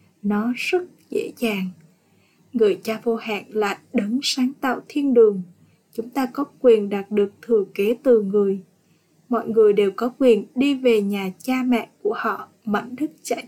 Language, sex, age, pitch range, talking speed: Vietnamese, female, 20-39, 210-260 Hz, 175 wpm